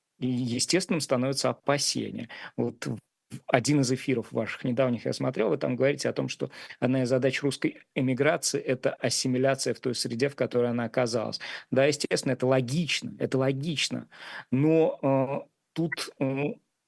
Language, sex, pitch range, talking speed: Russian, male, 125-145 Hz, 145 wpm